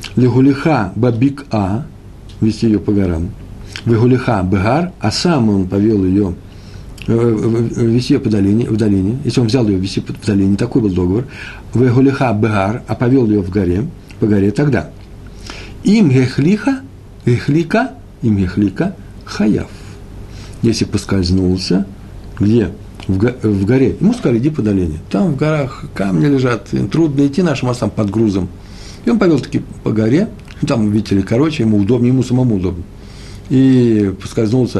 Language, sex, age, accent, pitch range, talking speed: Russian, male, 60-79, native, 100-125 Hz, 140 wpm